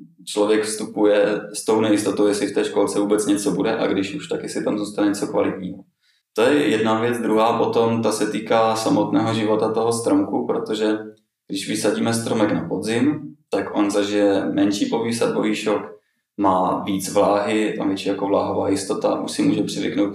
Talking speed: 170 wpm